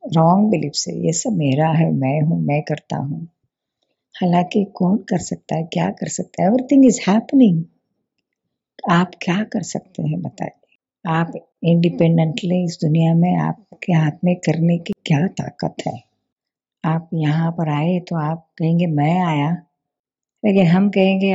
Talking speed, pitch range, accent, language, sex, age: 155 wpm, 165-195 Hz, native, Hindi, female, 50-69